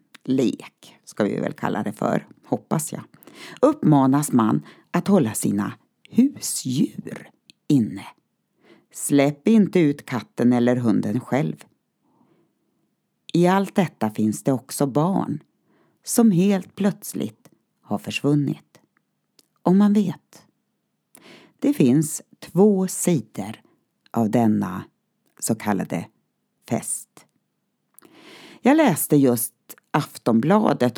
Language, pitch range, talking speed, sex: Swedish, 120-195 Hz, 100 wpm, female